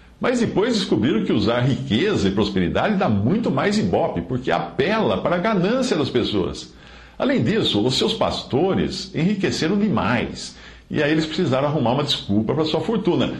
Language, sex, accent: Portuguese, male, Brazilian